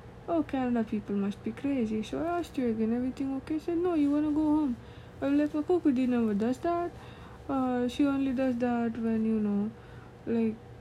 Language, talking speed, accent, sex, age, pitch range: English, 205 wpm, Indian, female, 20-39, 235-305 Hz